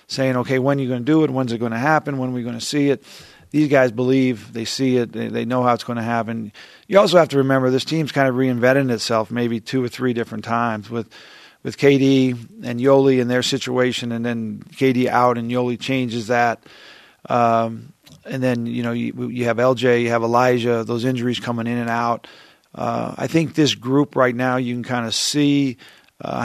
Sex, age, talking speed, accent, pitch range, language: male, 40-59, 220 wpm, American, 120-135 Hz, English